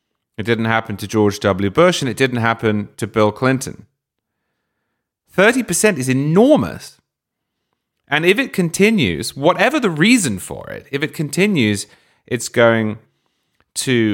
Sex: male